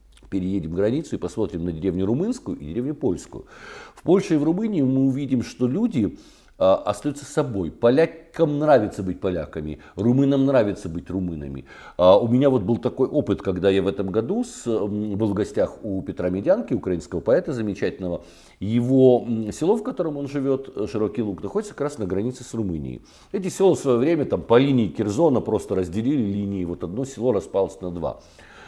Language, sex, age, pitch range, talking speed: Russian, male, 50-69, 100-135 Hz, 175 wpm